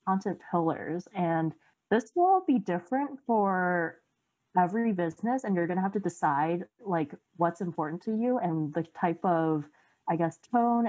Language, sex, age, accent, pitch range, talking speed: English, female, 20-39, American, 165-230 Hz, 160 wpm